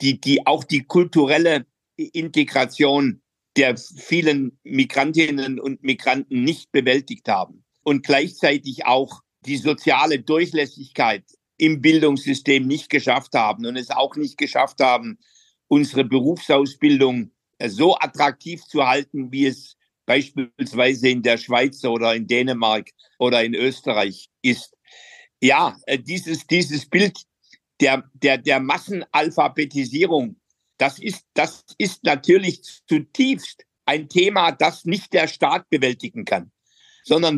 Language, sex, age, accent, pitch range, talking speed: German, male, 60-79, German, 135-175 Hz, 115 wpm